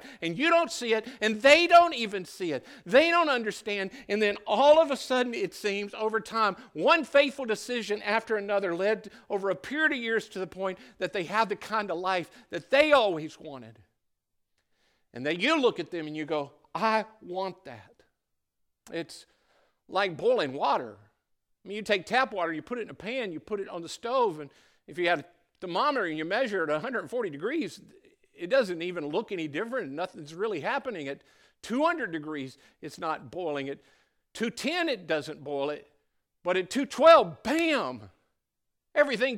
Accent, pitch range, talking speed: American, 165-265 Hz, 185 wpm